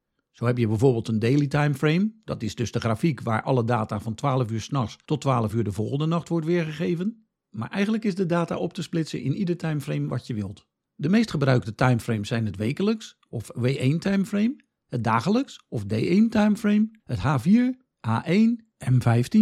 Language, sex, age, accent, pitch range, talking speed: Dutch, male, 50-69, Dutch, 120-200 Hz, 185 wpm